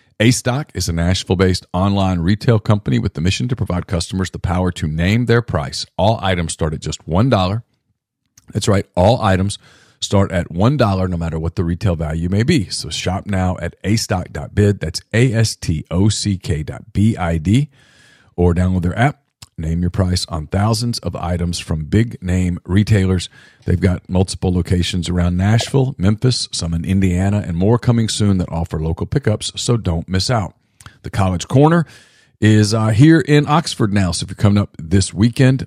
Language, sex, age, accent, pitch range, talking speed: English, male, 40-59, American, 90-110 Hz, 170 wpm